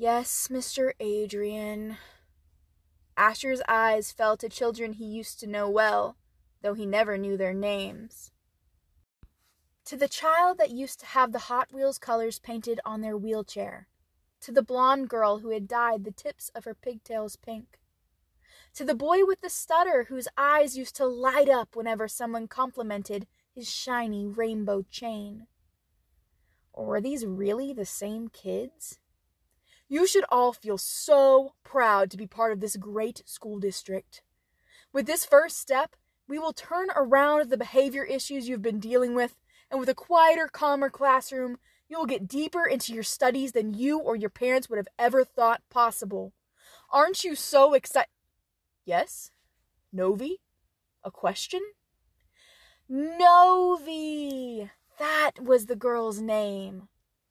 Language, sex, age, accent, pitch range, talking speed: English, female, 20-39, American, 210-275 Hz, 145 wpm